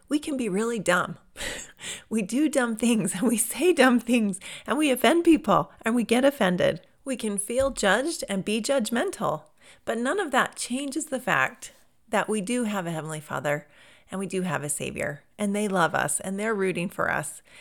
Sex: female